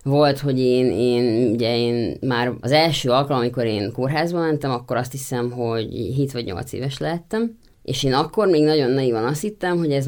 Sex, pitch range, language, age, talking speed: female, 120-150 Hz, Hungarian, 20-39, 195 wpm